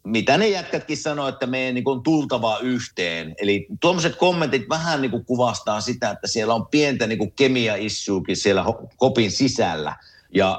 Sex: male